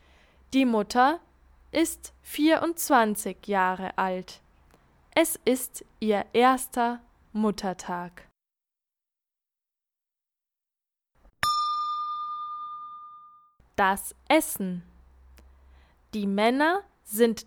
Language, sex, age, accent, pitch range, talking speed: English, female, 10-29, German, 200-290 Hz, 55 wpm